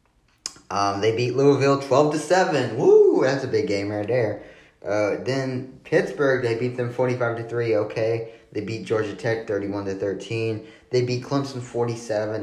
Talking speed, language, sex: 185 wpm, English, male